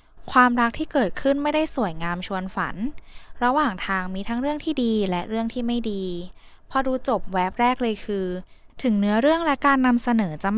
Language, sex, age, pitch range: Thai, female, 10-29, 195-270 Hz